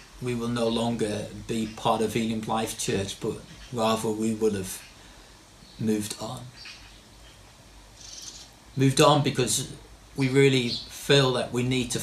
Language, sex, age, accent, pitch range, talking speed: English, male, 40-59, British, 110-135 Hz, 135 wpm